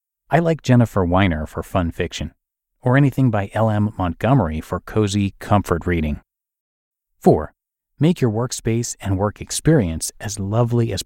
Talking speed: 140 wpm